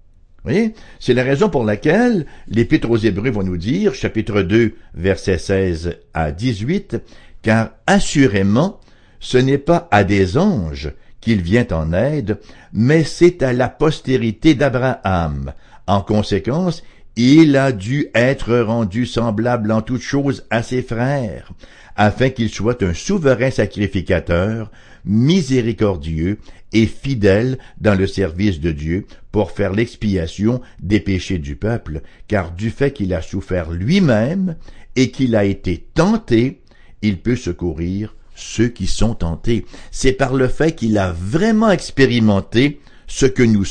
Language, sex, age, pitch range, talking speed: English, male, 60-79, 95-130 Hz, 140 wpm